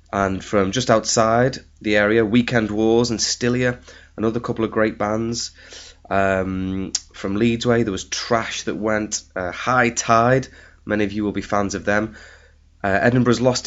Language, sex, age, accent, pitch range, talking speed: English, male, 20-39, British, 85-115 Hz, 165 wpm